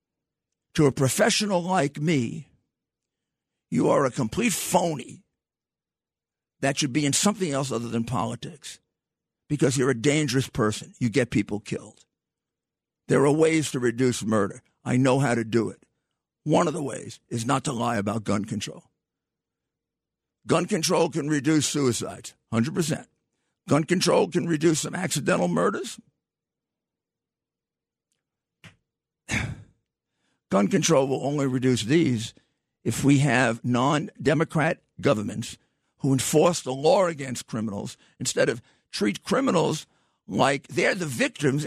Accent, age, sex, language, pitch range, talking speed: American, 50-69, male, English, 130-170 Hz, 130 wpm